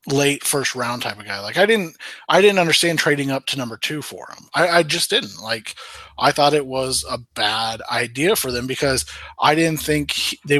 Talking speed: 220 wpm